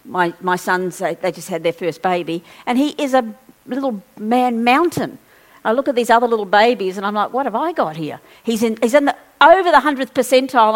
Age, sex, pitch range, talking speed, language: 50-69, female, 185-265 Hz, 225 wpm, English